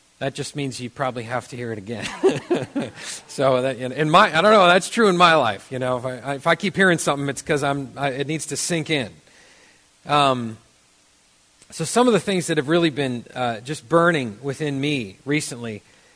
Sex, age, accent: male, 40-59, American